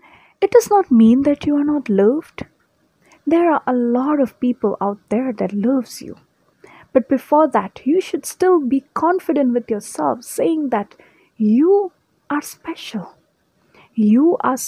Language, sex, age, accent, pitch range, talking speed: English, female, 30-49, Indian, 210-290 Hz, 150 wpm